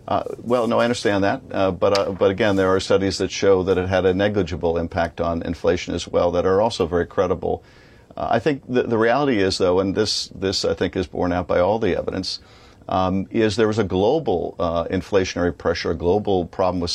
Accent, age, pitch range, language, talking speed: American, 50-69, 90-110 Hz, English, 225 wpm